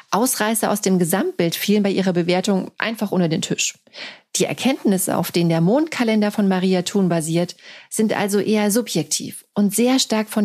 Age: 40-59